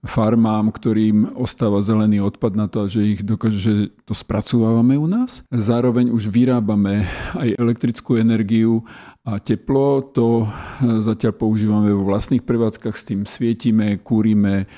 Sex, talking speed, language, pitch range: male, 135 wpm, Slovak, 105-115 Hz